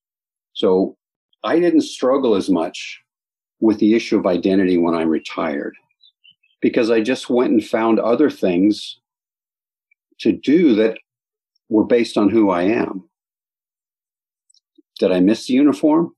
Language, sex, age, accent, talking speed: English, male, 50-69, American, 135 wpm